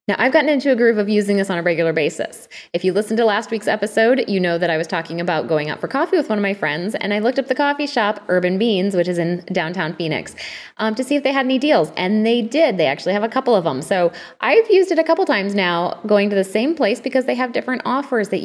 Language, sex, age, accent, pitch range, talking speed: English, female, 20-39, American, 180-255 Hz, 285 wpm